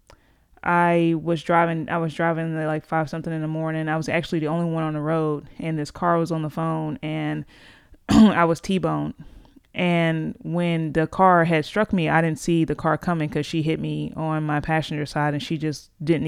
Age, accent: 20-39, American